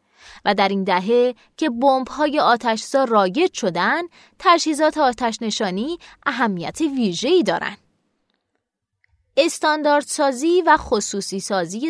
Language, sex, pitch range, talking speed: Persian, female, 205-300 Hz, 90 wpm